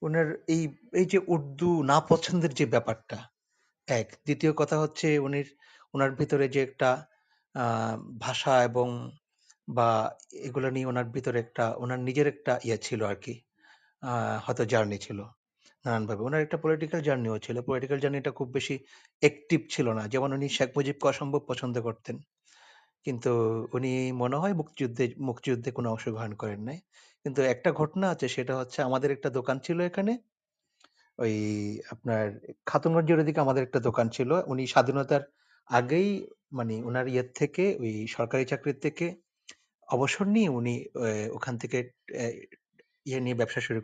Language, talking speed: Bengali, 85 wpm